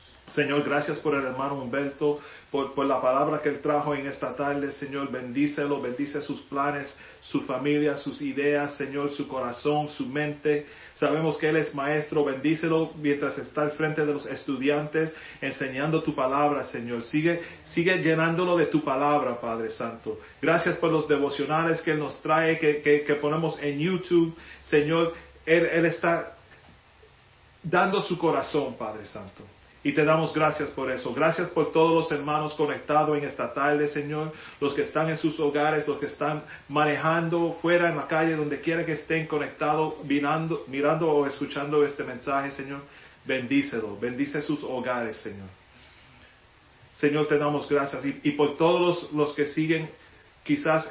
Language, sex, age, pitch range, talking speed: Spanish, male, 40-59, 140-155 Hz, 160 wpm